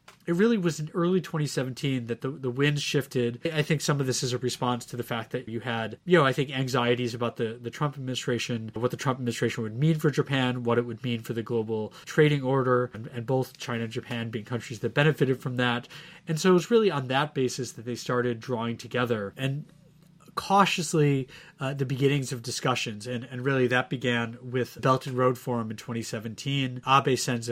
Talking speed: 210 wpm